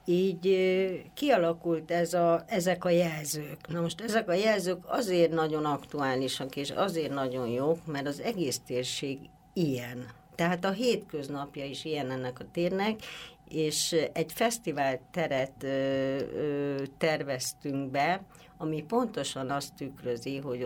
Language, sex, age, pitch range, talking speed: Hungarian, female, 60-79, 140-175 Hz, 130 wpm